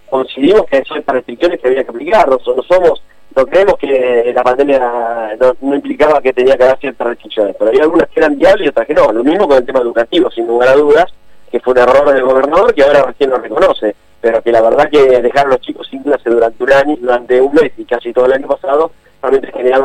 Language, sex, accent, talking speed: Spanish, male, Argentinian, 245 wpm